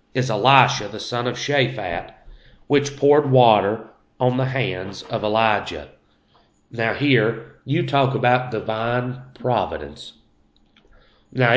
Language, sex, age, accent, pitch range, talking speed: English, male, 40-59, American, 120-145 Hz, 115 wpm